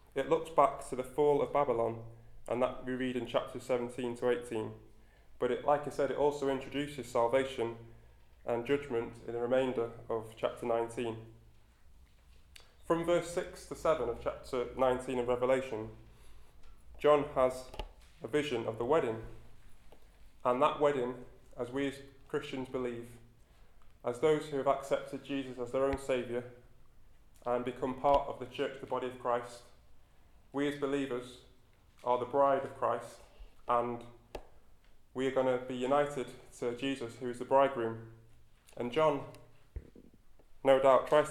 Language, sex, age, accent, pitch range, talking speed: English, male, 20-39, British, 115-135 Hz, 155 wpm